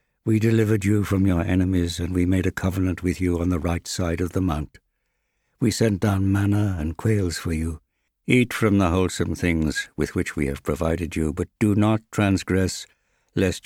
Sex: male